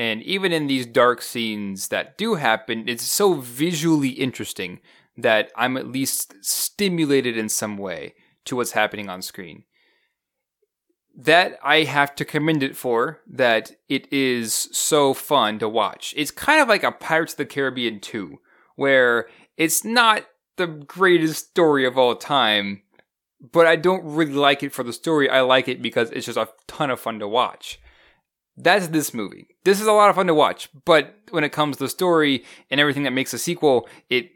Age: 20-39